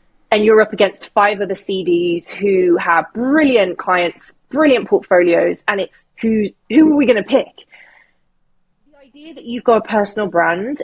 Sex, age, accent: female, 20-39, British